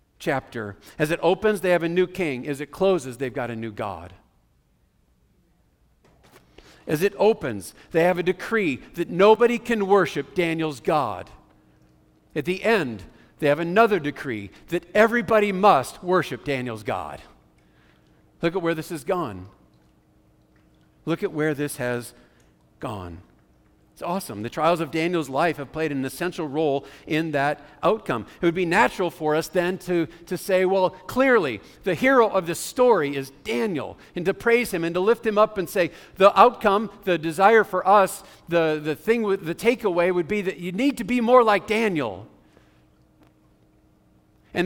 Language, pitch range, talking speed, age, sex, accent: English, 140-195 Hz, 165 wpm, 50-69, male, American